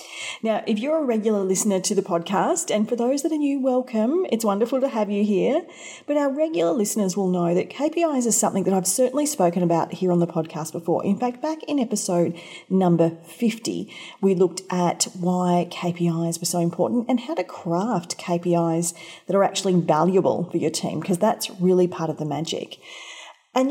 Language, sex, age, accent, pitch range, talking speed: English, female, 40-59, Australian, 175-245 Hz, 195 wpm